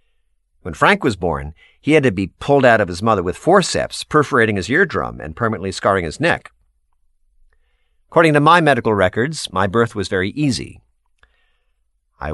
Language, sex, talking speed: English, male, 165 wpm